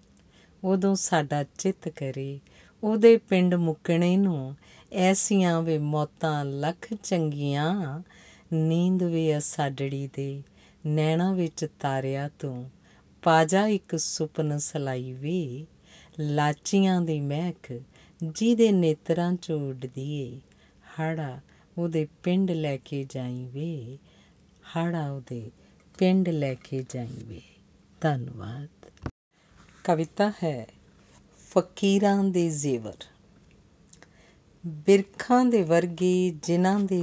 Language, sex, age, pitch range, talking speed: Punjabi, female, 50-69, 140-180 Hz, 80 wpm